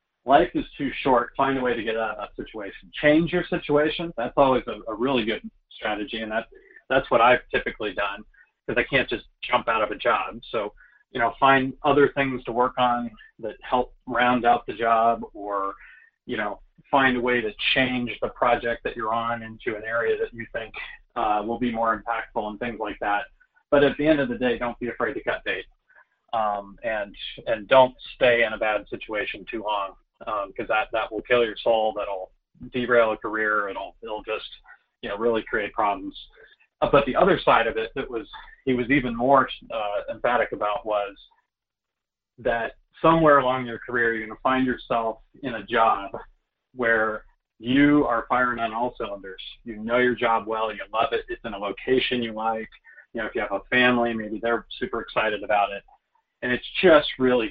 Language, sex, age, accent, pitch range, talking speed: English, male, 40-59, American, 110-140 Hz, 205 wpm